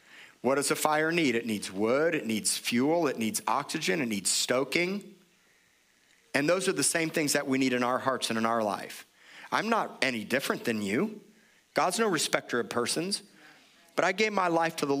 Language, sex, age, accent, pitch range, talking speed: English, male, 40-59, American, 125-160 Hz, 205 wpm